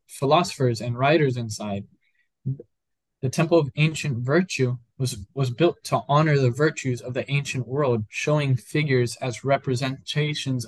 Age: 10-29